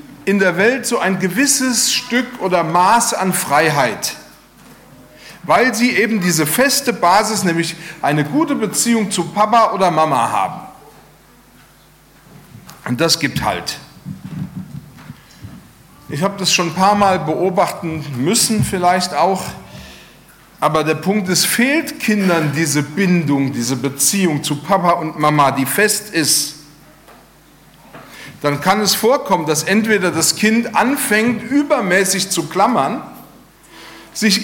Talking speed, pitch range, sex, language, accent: 125 wpm, 165-230 Hz, male, German, German